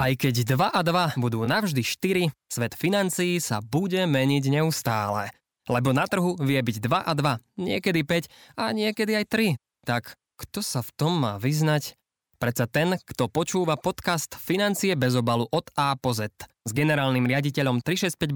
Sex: male